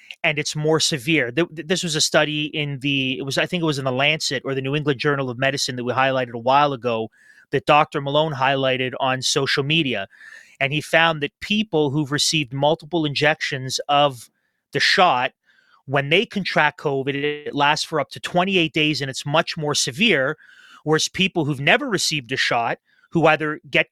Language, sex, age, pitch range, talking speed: English, male, 30-49, 140-165 Hz, 195 wpm